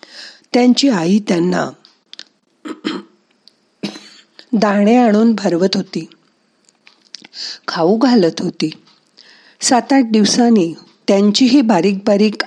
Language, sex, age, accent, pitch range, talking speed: Marathi, female, 50-69, native, 190-250 Hz, 65 wpm